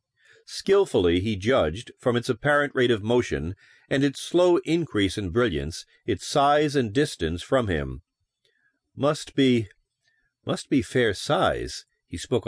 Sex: male